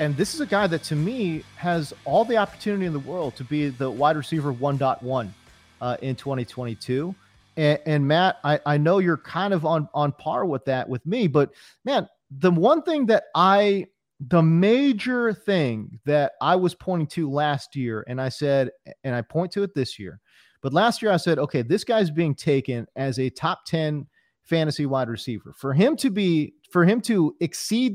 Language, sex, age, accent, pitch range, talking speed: English, male, 30-49, American, 135-195 Hz, 195 wpm